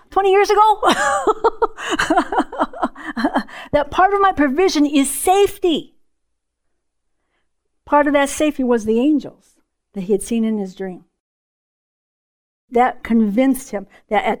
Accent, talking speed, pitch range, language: American, 120 wpm, 235-365 Hz, English